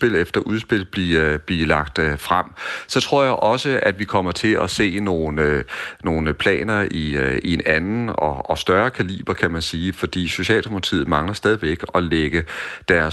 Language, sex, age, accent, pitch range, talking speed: Danish, male, 40-59, native, 80-100 Hz, 170 wpm